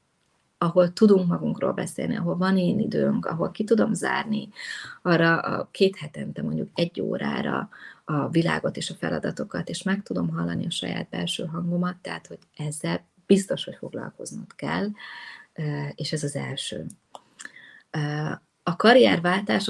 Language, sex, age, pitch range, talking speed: Hungarian, female, 30-49, 150-185 Hz, 135 wpm